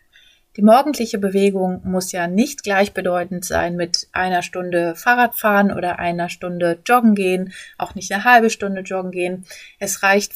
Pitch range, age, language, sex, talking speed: 180-215 Hz, 30-49, German, female, 150 wpm